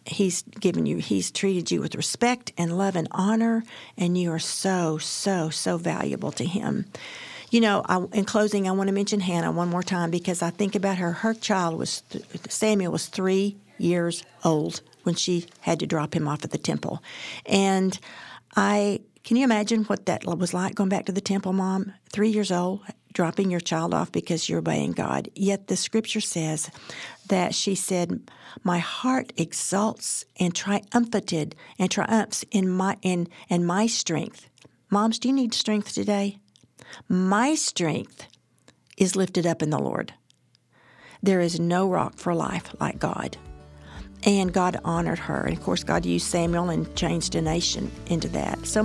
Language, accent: English, American